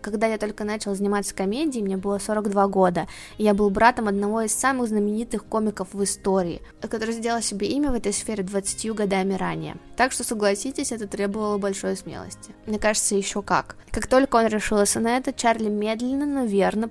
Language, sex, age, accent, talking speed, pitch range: Russian, female, 20-39, native, 185 wpm, 190-225 Hz